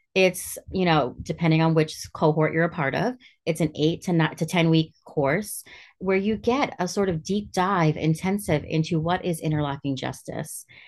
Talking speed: 190 wpm